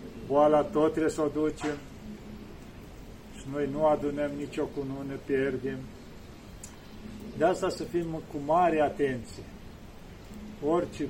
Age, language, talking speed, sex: 40-59, Romanian, 120 wpm, male